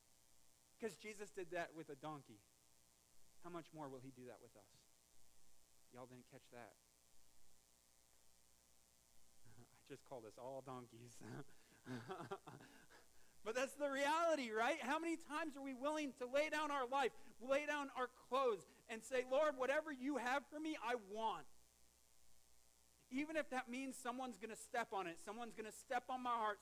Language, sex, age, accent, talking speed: English, male, 40-59, American, 165 wpm